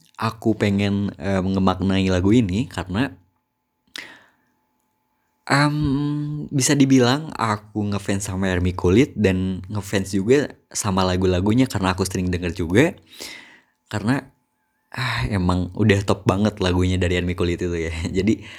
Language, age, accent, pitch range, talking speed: Indonesian, 20-39, native, 90-110 Hz, 125 wpm